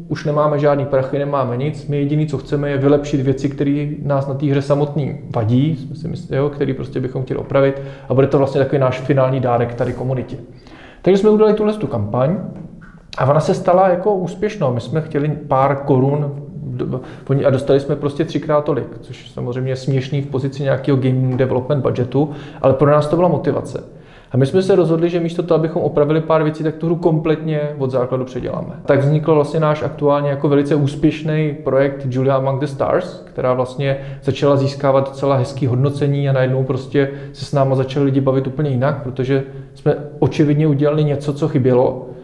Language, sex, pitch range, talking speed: Czech, male, 135-155 Hz, 190 wpm